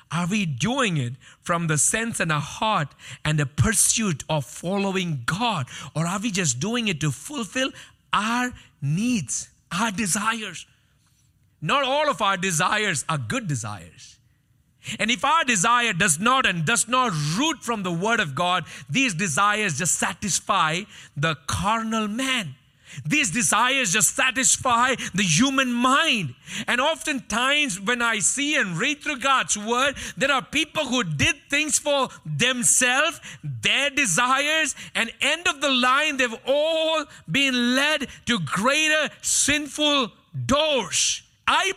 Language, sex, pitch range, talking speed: English, male, 155-265 Hz, 140 wpm